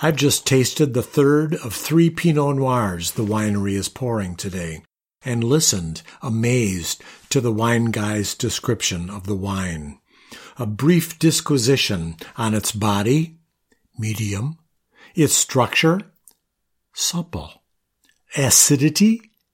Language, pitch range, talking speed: English, 100-150 Hz, 110 wpm